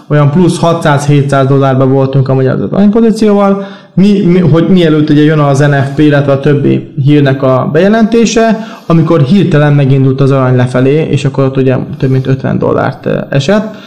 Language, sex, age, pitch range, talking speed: Hungarian, male, 20-39, 140-175 Hz, 160 wpm